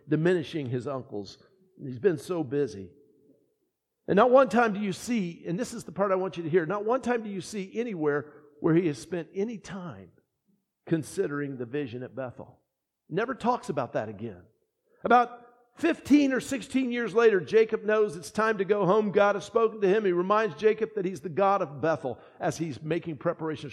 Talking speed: 195 wpm